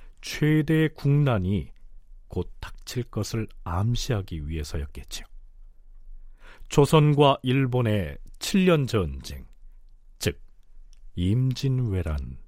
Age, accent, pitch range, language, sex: 40-59, native, 95-150 Hz, Korean, male